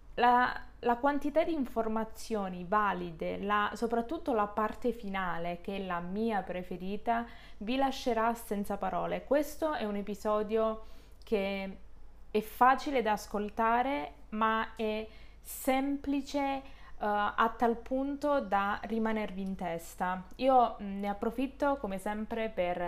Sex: female